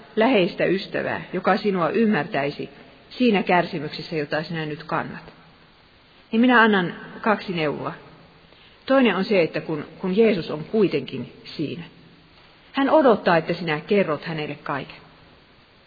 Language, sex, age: Finnish, female, 40-59